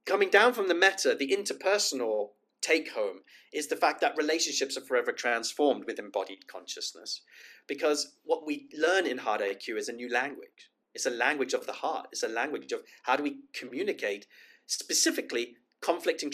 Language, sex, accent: Swedish, male, British